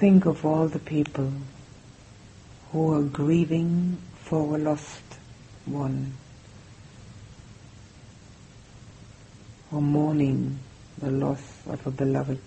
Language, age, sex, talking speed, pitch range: English, 60-79, female, 90 wpm, 110-140 Hz